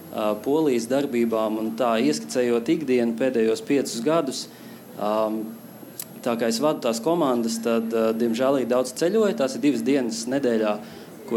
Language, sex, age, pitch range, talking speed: English, male, 20-39, 115-135 Hz, 130 wpm